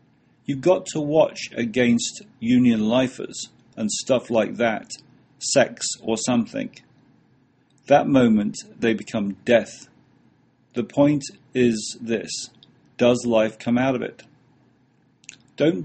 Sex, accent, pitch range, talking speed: male, British, 115-145 Hz, 115 wpm